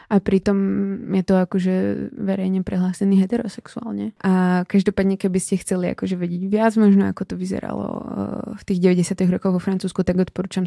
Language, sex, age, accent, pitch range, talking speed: Czech, female, 20-39, native, 175-190 Hz, 155 wpm